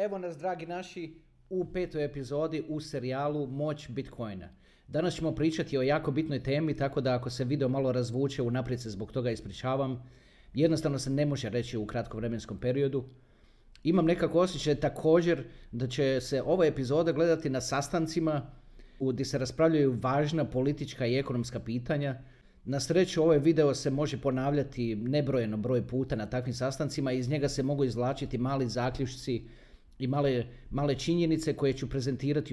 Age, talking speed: 40-59, 160 wpm